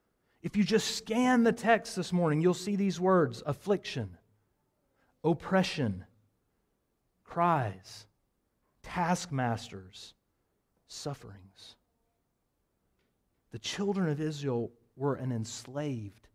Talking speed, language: 90 wpm, English